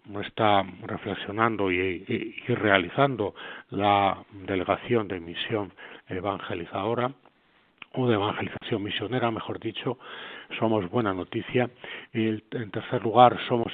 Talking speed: 110 wpm